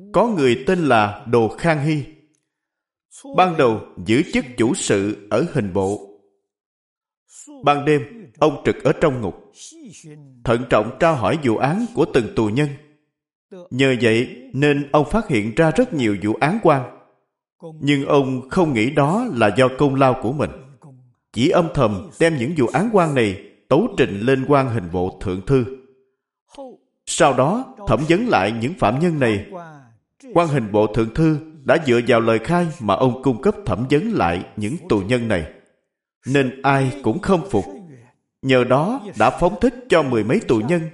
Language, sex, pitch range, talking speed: Vietnamese, male, 115-170 Hz, 175 wpm